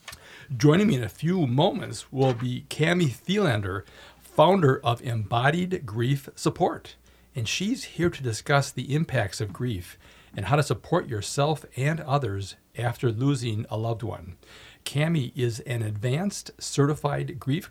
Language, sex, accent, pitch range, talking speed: English, male, American, 115-145 Hz, 140 wpm